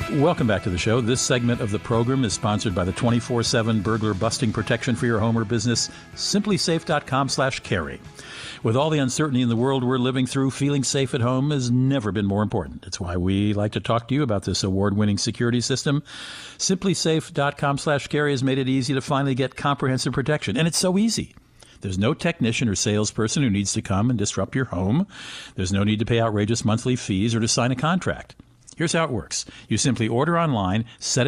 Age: 50-69